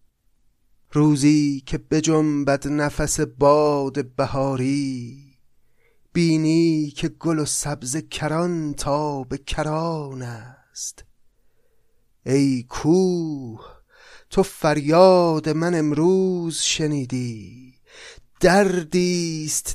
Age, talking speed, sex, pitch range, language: 30-49, 70 wpm, male, 115-150 Hz, Persian